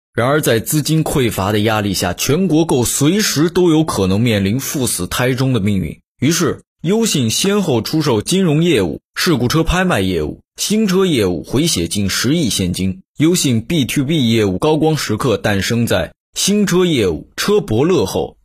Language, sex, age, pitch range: Chinese, male, 20-39, 105-160 Hz